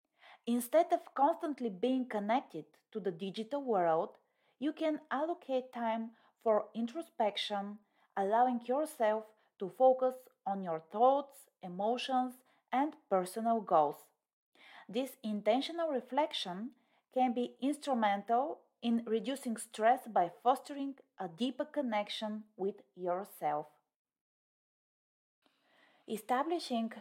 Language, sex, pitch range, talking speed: English, female, 200-270 Hz, 95 wpm